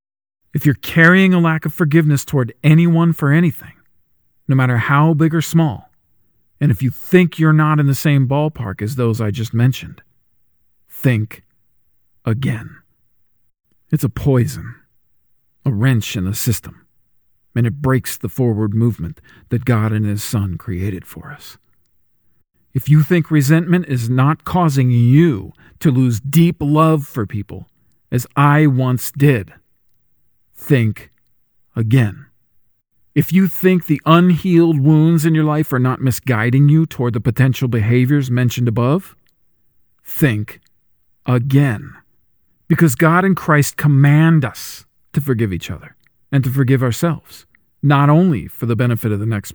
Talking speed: 145 wpm